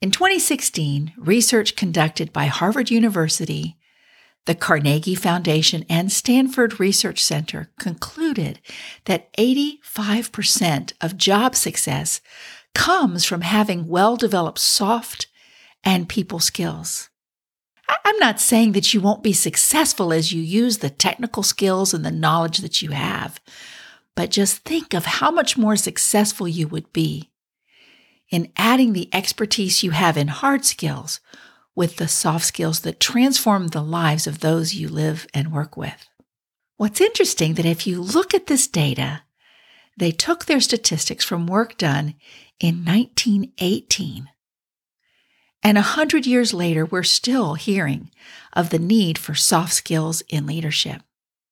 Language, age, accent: English, 50-69, American